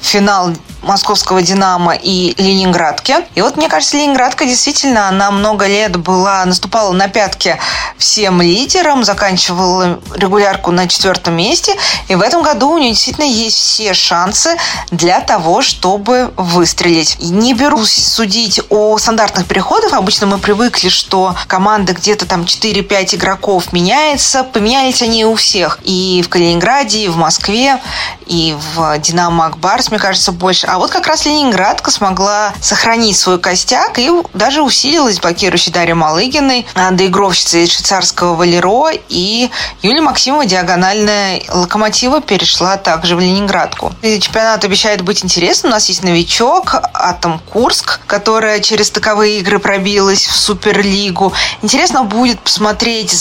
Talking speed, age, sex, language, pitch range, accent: 140 wpm, 20-39, female, Russian, 185-230 Hz, native